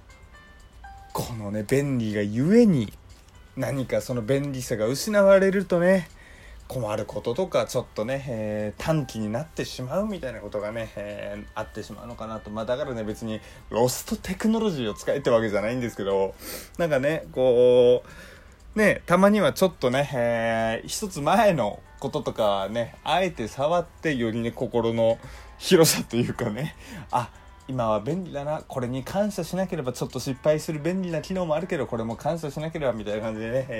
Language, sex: Japanese, male